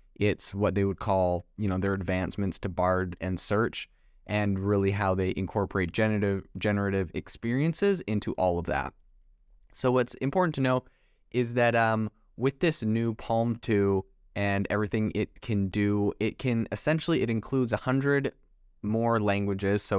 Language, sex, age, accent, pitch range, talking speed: English, male, 20-39, American, 95-115 Hz, 155 wpm